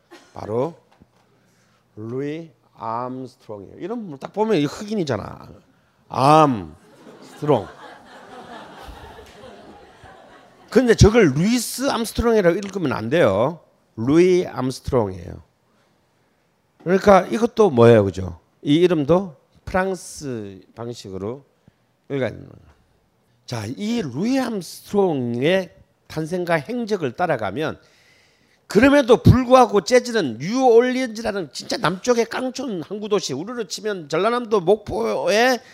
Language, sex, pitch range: Korean, male, 150-240 Hz